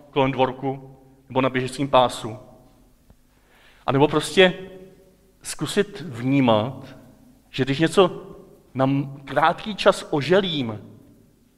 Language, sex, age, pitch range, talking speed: Czech, male, 40-59, 125-160 Hz, 95 wpm